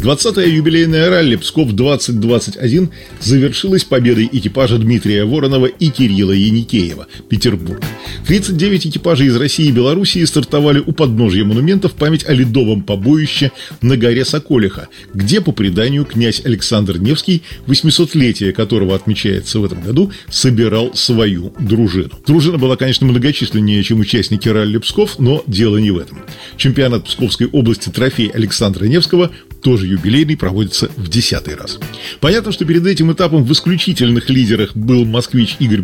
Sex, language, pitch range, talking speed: male, Russian, 110-155 Hz, 135 wpm